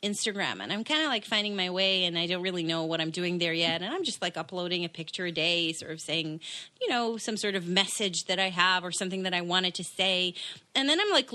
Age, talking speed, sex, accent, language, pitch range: 30-49, 270 wpm, female, American, English, 185-230 Hz